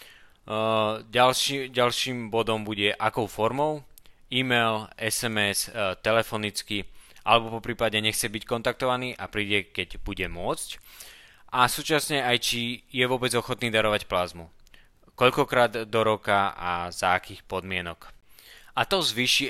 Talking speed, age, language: 125 wpm, 20-39, Slovak